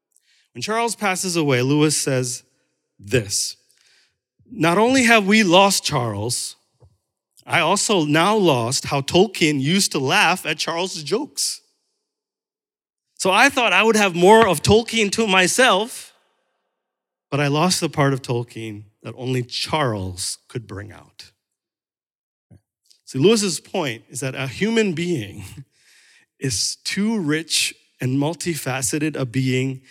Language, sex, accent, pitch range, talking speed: English, male, American, 130-185 Hz, 130 wpm